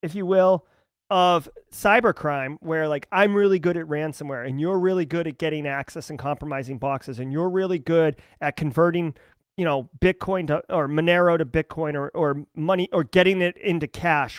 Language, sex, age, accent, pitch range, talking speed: English, male, 30-49, American, 150-200 Hz, 185 wpm